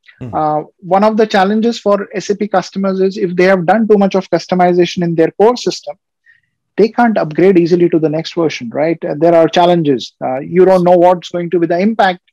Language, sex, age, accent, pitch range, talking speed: English, male, 30-49, Indian, 165-200 Hz, 215 wpm